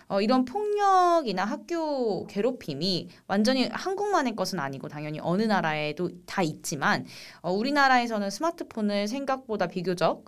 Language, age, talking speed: English, 20-39, 110 wpm